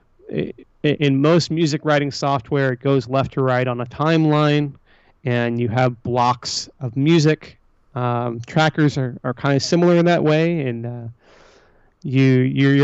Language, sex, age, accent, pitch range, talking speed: English, male, 30-49, American, 125-145 Hz, 155 wpm